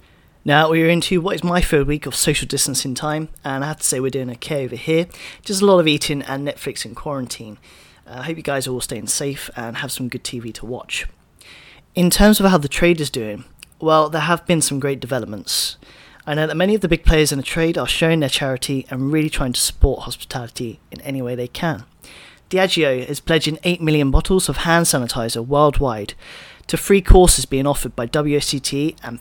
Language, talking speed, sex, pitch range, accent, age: English, 215 wpm, male, 130-160 Hz, British, 30-49